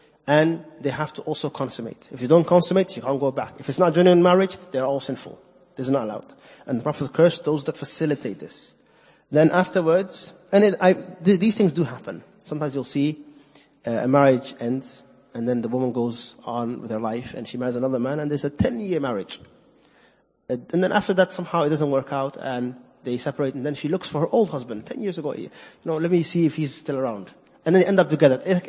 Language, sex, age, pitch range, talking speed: English, male, 30-49, 130-175 Hz, 230 wpm